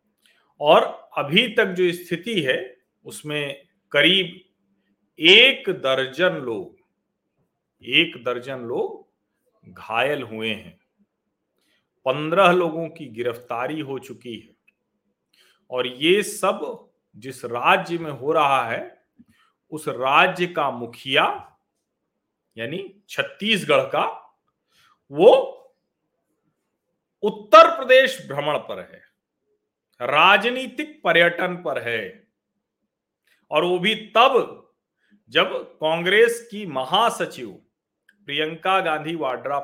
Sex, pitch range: male, 145-210 Hz